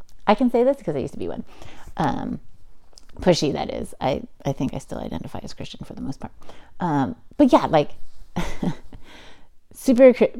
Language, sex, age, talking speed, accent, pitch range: English, female, 30-49, 180 wpm, American, 150-240 Hz